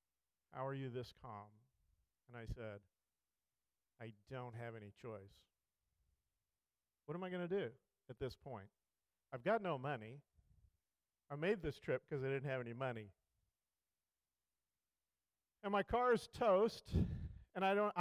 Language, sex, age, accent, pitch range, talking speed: English, male, 50-69, American, 105-155 Hz, 145 wpm